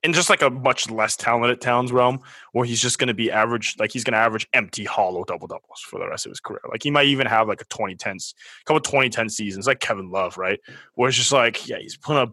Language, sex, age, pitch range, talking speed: English, male, 20-39, 110-140 Hz, 265 wpm